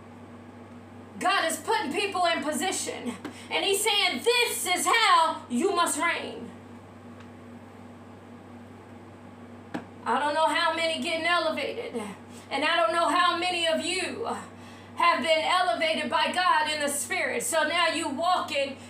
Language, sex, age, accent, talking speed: English, female, 40-59, American, 135 wpm